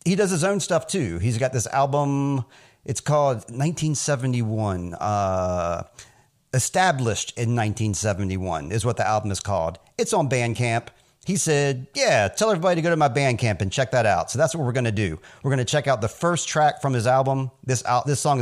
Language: English